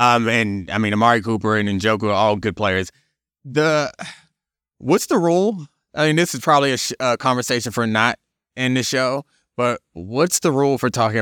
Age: 20-39